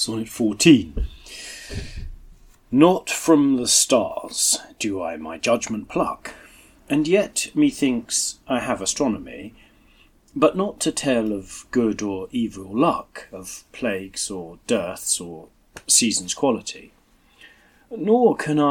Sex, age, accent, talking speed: male, 40-59, British, 110 wpm